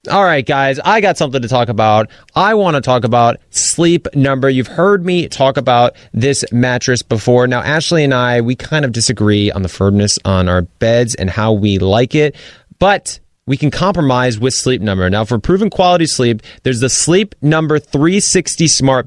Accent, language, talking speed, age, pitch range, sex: American, English, 190 wpm, 30-49, 115-160 Hz, male